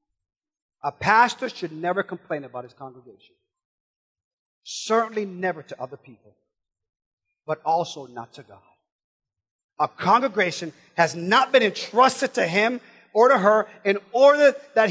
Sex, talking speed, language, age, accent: male, 130 wpm, English, 40-59, American